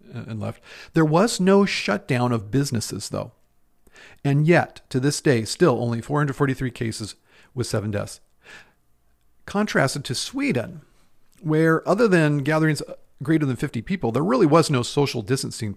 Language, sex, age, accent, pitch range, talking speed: English, male, 50-69, American, 110-140 Hz, 145 wpm